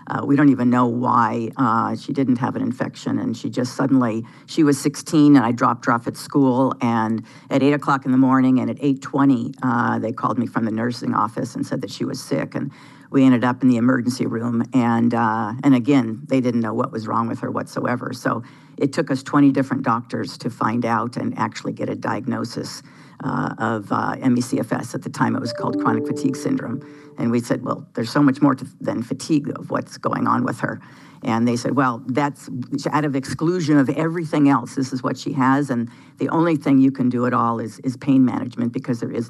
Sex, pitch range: female, 120-140 Hz